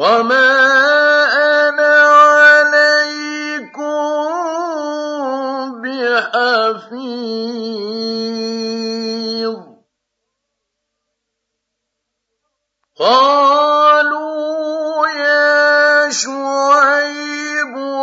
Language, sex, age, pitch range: Arabic, male, 50-69, 220-290 Hz